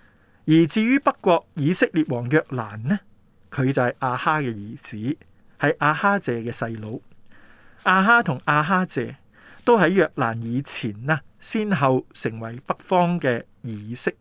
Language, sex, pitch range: Chinese, male, 115-160 Hz